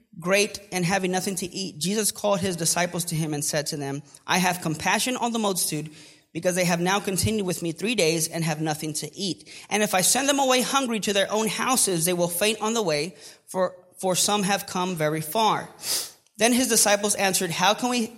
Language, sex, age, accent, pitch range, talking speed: English, male, 30-49, American, 160-210 Hz, 220 wpm